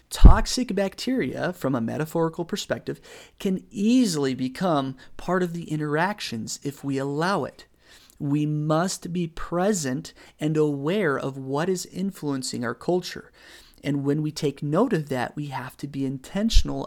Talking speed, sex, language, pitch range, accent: 145 wpm, male, English, 140-185 Hz, American